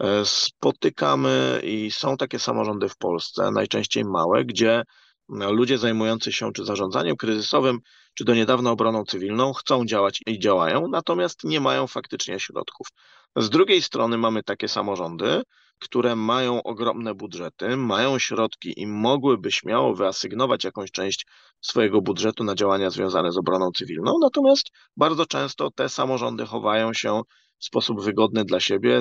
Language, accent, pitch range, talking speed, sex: Polish, native, 100-120 Hz, 140 wpm, male